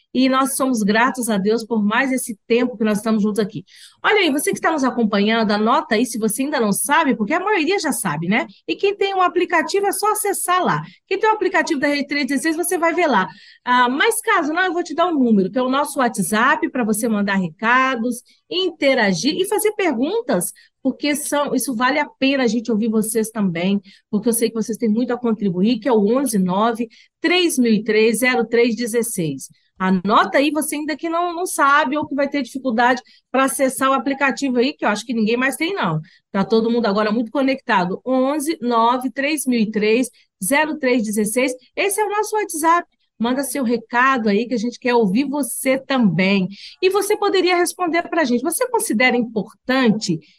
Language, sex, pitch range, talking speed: Portuguese, female, 220-305 Hz, 195 wpm